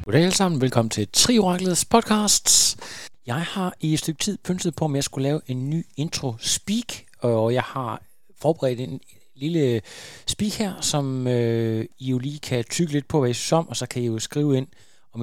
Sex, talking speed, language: male, 195 wpm, Danish